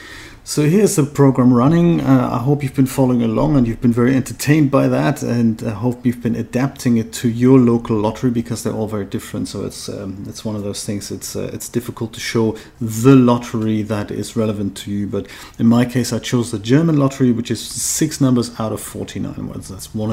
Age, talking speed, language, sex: 30-49, 225 wpm, English, male